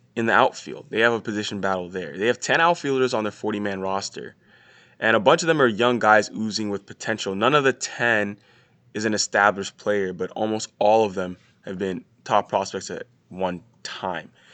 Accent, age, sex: American, 20-39, male